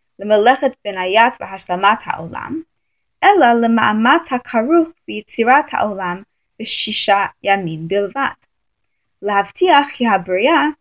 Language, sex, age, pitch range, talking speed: English, female, 20-39, 195-290 Hz, 100 wpm